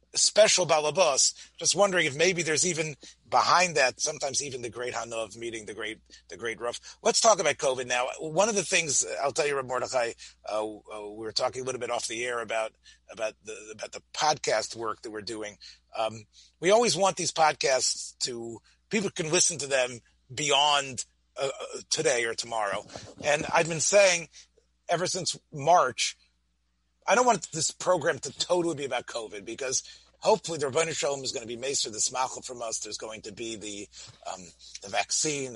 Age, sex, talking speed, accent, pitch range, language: 30-49, male, 185 wpm, American, 110-175 Hz, English